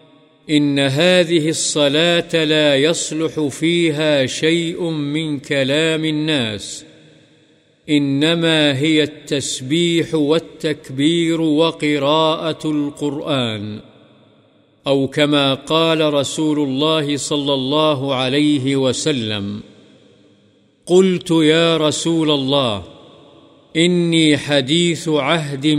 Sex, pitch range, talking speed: male, 140-160 Hz, 75 wpm